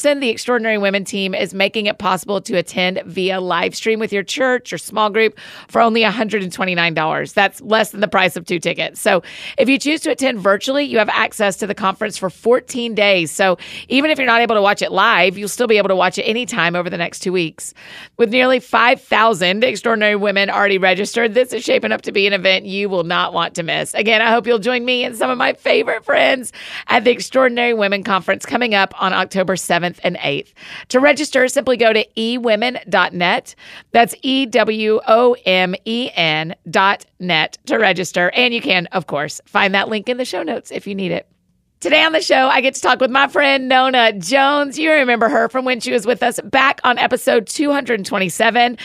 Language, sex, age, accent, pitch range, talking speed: English, female, 40-59, American, 195-255 Hz, 205 wpm